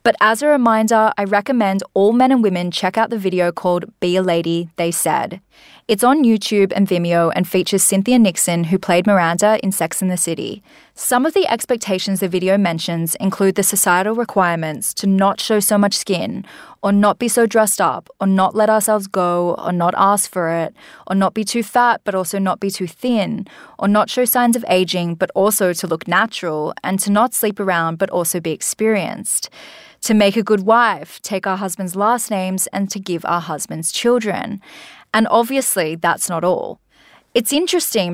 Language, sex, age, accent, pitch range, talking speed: English, female, 20-39, Australian, 180-220 Hz, 195 wpm